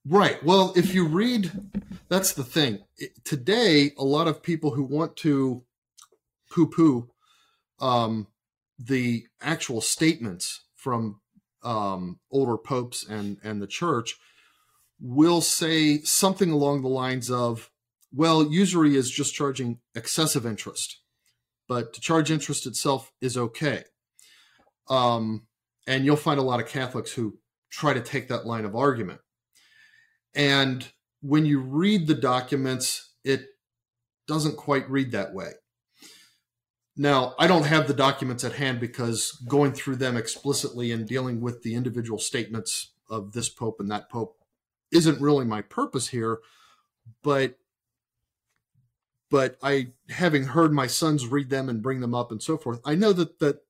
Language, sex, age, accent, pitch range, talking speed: English, male, 40-59, American, 120-150 Hz, 145 wpm